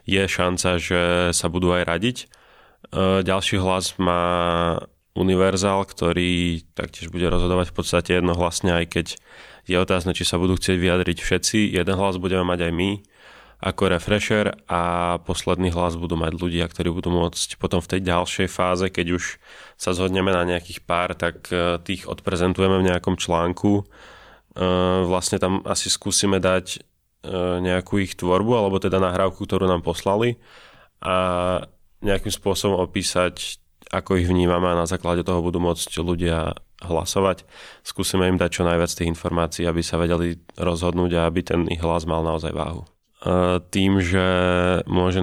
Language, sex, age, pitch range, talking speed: Slovak, male, 20-39, 85-95 Hz, 150 wpm